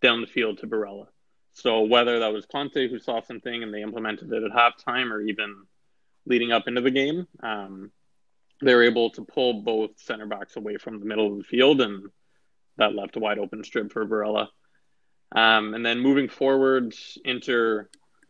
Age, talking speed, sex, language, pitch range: 20-39, 180 wpm, male, English, 105-125 Hz